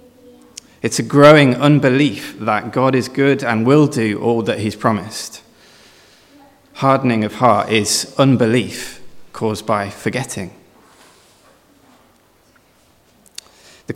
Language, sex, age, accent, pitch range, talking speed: English, male, 20-39, British, 110-140 Hz, 105 wpm